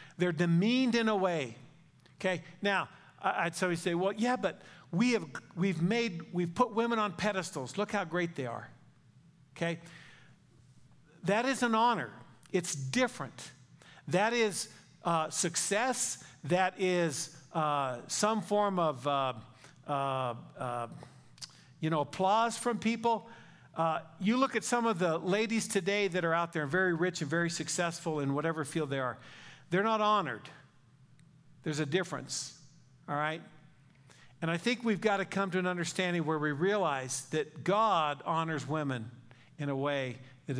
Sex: male